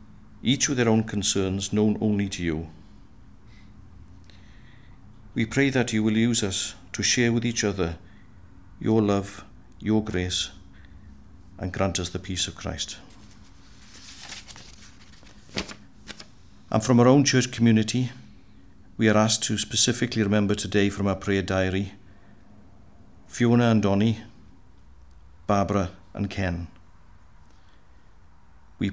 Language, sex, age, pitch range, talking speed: English, male, 50-69, 85-110 Hz, 115 wpm